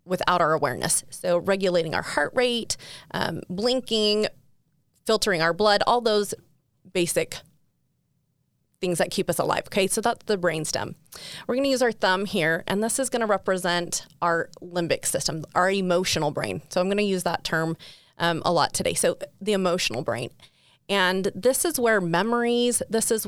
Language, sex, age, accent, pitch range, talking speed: English, female, 30-49, American, 170-210 Hz, 175 wpm